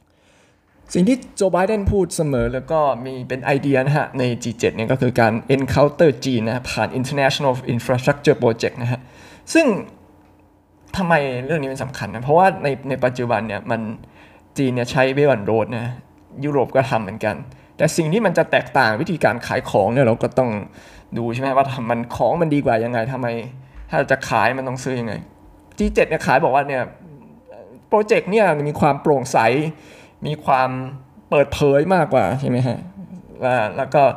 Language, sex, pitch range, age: Thai, male, 115-145 Hz, 20-39